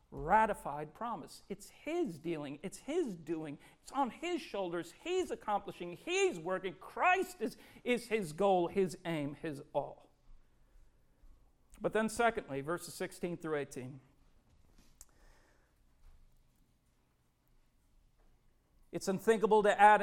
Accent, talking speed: American, 110 wpm